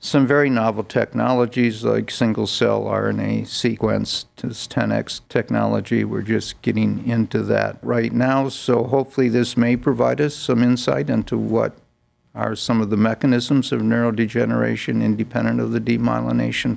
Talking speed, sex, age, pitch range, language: 145 wpm, male, 50-69, 110-125 Hz, English